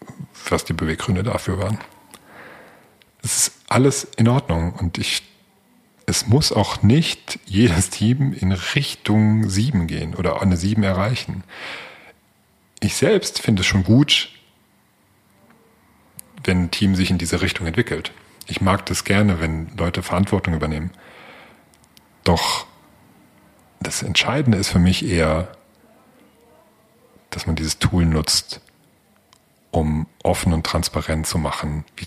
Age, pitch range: 40-59, 80-105 Hz